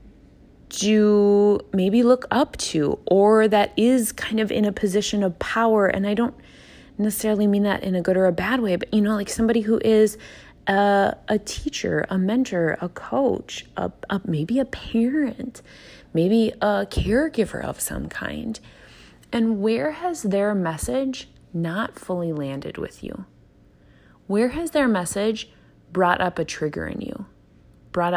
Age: 20-39